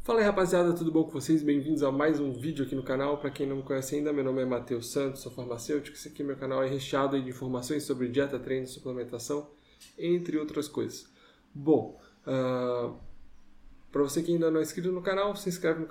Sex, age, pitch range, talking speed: male, 10-29, 135-155 Hz, 215 wpm